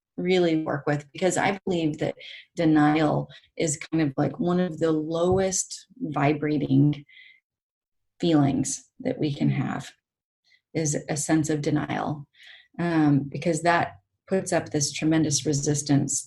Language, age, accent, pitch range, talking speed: English, 30-49, American, 145-170 Hz, 130 wpm